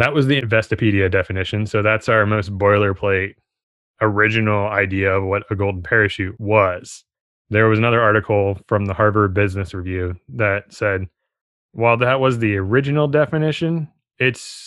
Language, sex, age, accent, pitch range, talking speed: English, male, 20-39, American, 100-120 Hz, 145 wpm